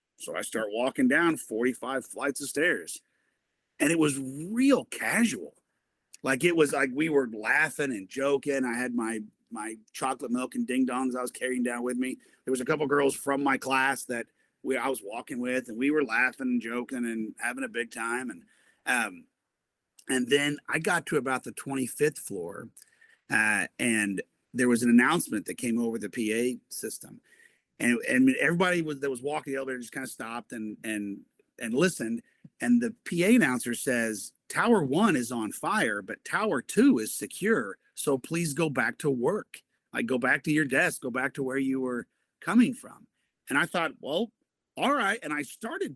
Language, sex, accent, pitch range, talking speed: English, male, American, 125-170 Hz, 190 wpm